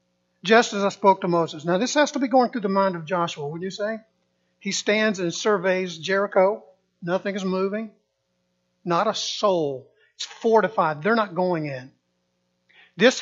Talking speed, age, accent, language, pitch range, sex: 170 wpm, 50-69, American, English, 135-205 Hz, male